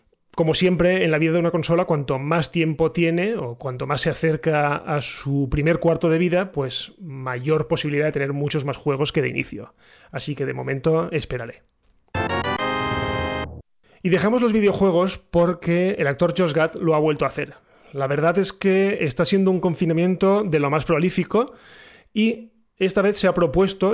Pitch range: 155-185 Hz